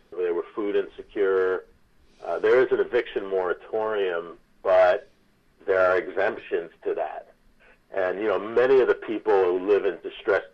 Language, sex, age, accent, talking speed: English, male, 50-69, American, 155 wpm